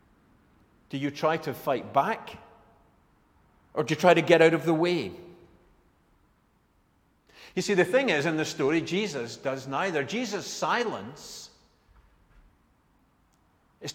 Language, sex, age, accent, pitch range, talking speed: English, male, 50-69, British, 150-185 Hz, 130 wpm